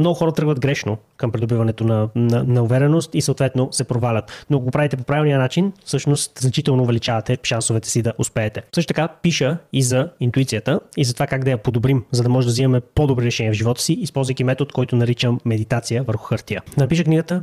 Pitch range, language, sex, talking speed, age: 120-150 Hz, Bulgarian, male, 205 wpm, 20-39